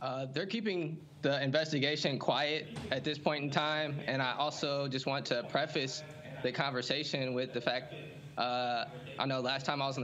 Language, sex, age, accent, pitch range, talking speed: English, male, 20-39, American, 135-160 Hz, 185 wpm